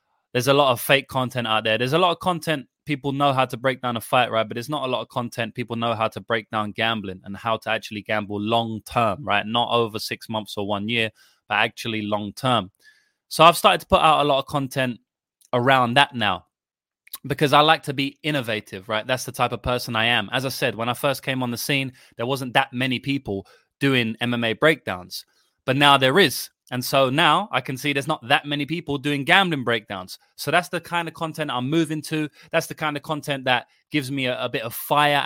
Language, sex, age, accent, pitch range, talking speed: English, male, 20-39, British, 115-140 Hz, 240 wpm